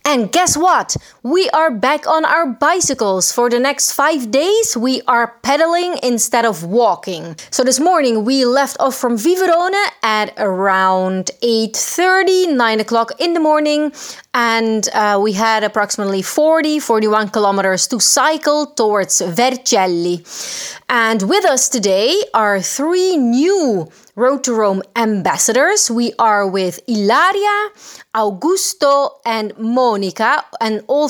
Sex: female